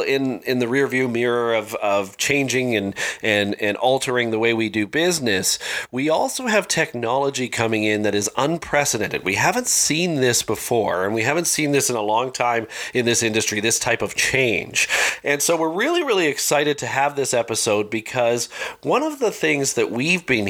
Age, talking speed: 40-59, 195 wpm